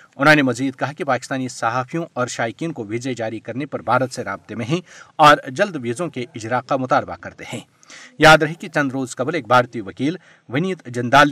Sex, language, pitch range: male, Urdu, 120-155 Hz